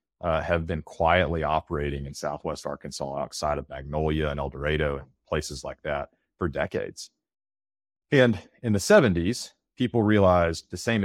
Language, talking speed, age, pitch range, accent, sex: English, 150 wpm, 30-49, 75-100 Hz, American, male